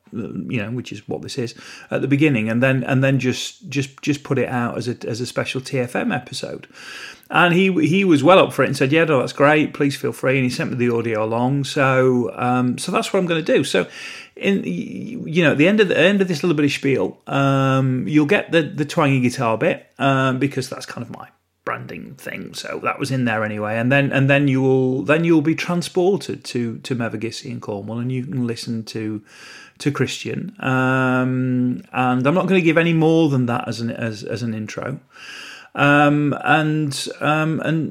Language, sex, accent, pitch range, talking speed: English, male, British, 125-150 Hz, 225 wpm